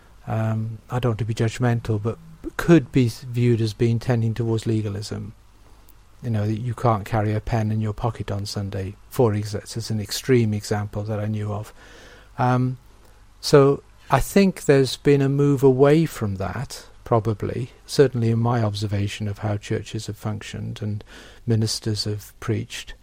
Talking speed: 165 wpm